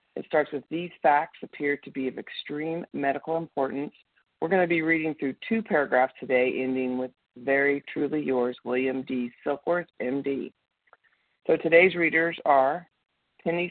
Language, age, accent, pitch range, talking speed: English, 50-69, American, 130-165 Hz, 150 wpm